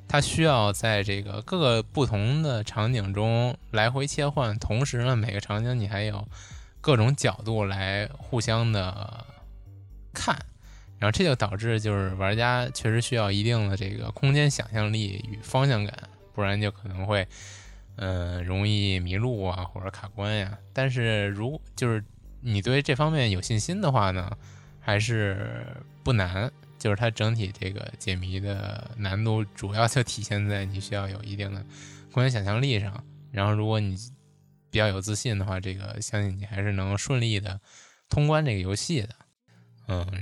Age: 20-39